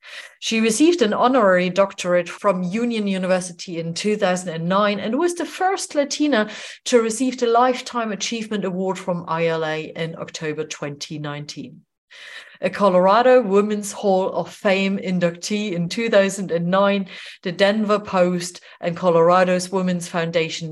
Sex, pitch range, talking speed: female, 175-235 Hz, 120 wpm